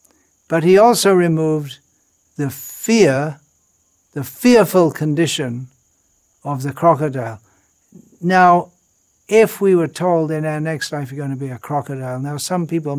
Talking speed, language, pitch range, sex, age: 140 wpm, English, 135-170 Hz, male, 60-79